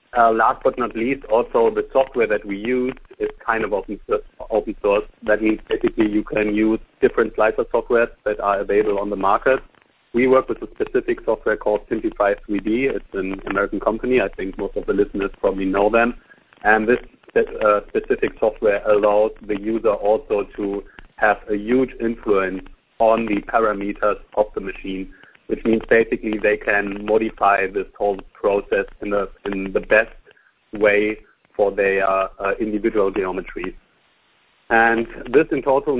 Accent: German